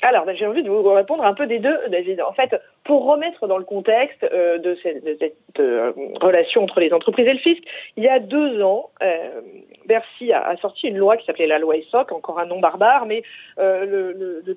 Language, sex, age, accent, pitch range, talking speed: French, female, 40-59, French, 200-310 Hz, 240 wpm